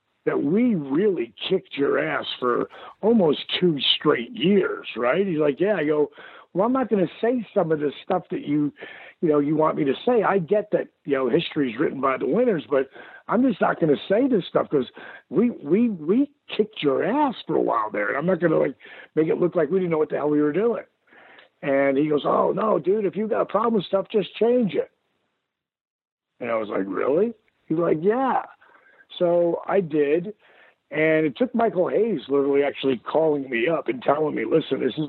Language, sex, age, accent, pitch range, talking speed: English, male, 50-69, American, 145-220 Hz, 220 wpm